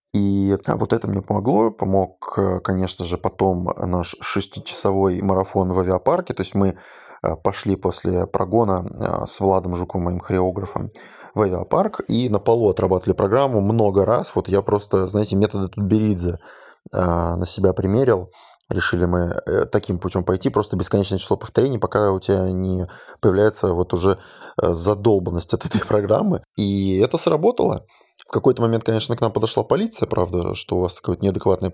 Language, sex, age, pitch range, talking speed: Russian, male, 20-39, 95-105 Hz, 150 wpm